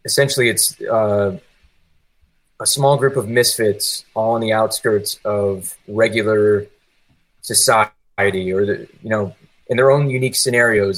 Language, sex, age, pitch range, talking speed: English, male, 20-39, 100-120 Hz, 125 wpm